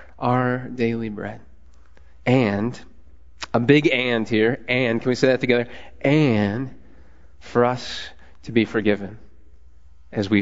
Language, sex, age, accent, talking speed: English, male, 30-49, American, 125 wpm